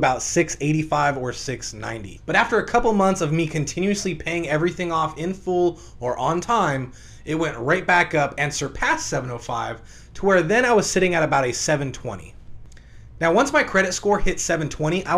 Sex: male